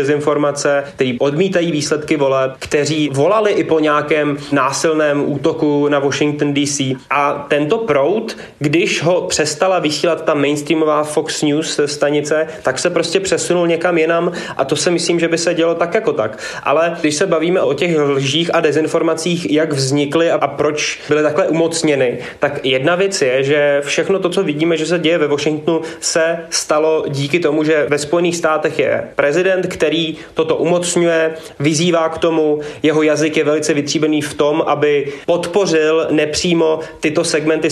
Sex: male